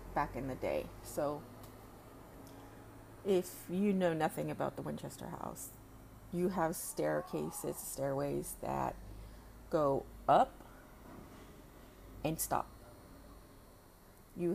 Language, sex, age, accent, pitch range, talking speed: English, female, 30-49, American, 115-180 Hz, 95 wpm